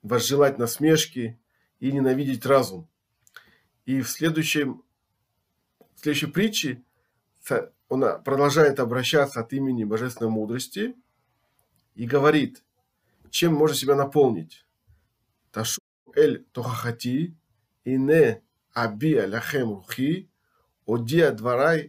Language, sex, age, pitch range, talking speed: Russian, male, 40-59, 115-150 Hz, 65 wpm